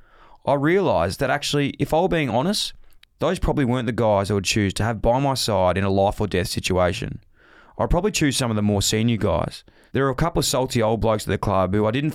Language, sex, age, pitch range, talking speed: English, male, 20-39, 100-130 Hz, 250 wpm